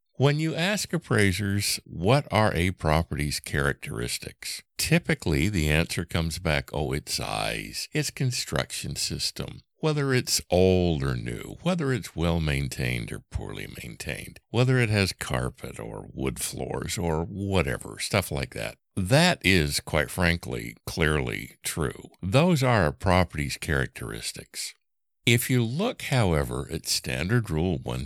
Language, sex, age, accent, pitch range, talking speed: English, male, 60-79, American, 75-120 Hz, 130 wpm